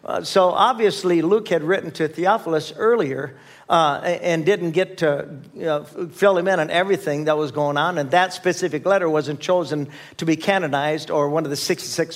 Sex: male